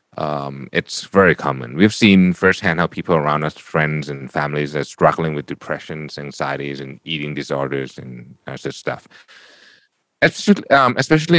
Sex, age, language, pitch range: male, 30-49, Thai, 75-95 Hz